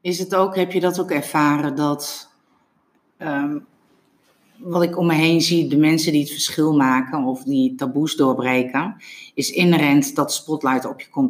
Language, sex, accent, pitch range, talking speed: Dutch, female, Dutch, 150-205 Hz, 175 wpm